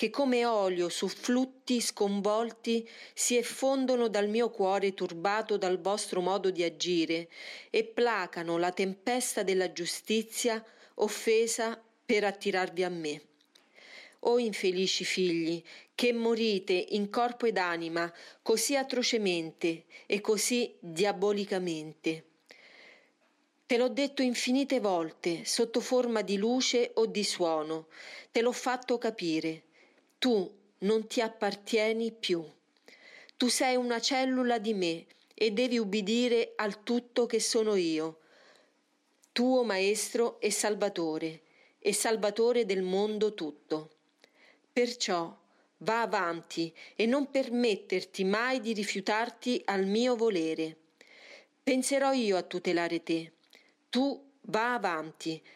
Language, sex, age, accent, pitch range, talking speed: Italian, female, 40-59, native, 180-240 Hz, 115 wpm